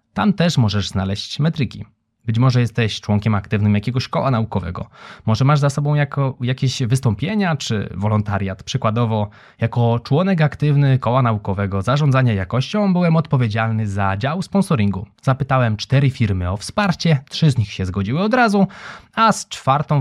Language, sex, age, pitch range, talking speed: Polish, male, 20-39, 105-150 Hz, 145 wpm